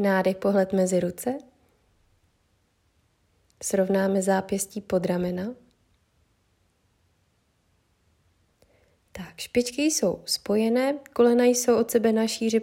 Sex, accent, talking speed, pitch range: female, native, 85 wpm, 175-220 Hz